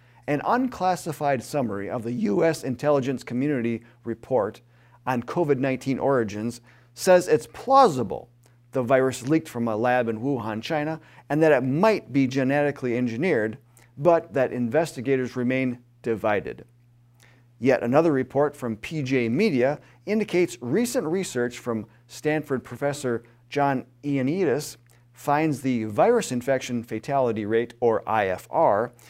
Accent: American